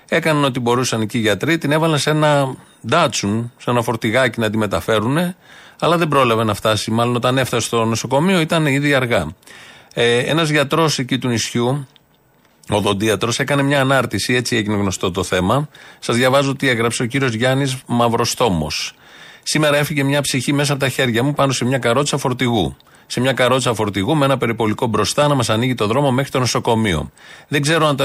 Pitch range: 115-140 Hz